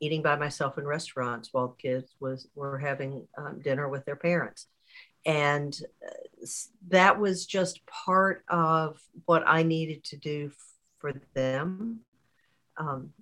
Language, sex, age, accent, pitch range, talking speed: English, female, 50-69, American, 135-170 Hz, 130 wpm